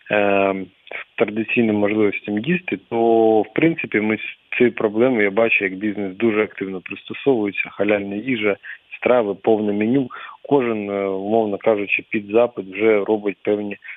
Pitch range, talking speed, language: 100-115 Hz, 130 wpm, English